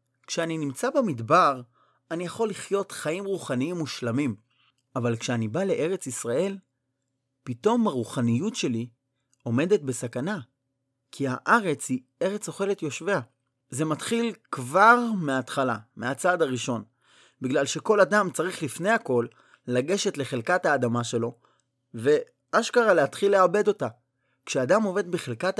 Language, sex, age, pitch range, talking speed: Hebrew, male, 30-49, 125-185 Hz, 115 wpm